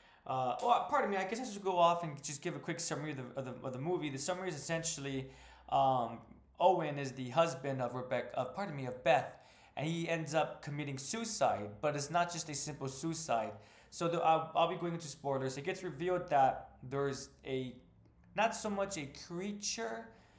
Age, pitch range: 20-39, 130-165 Hz